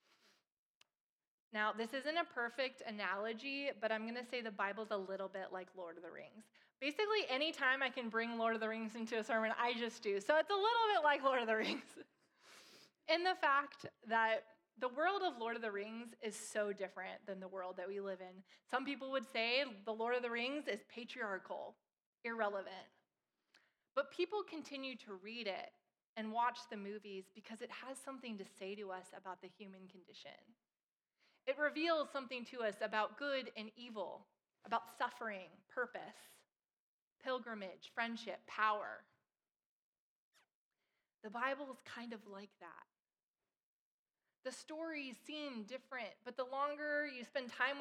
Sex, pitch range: female, 215-275 Hz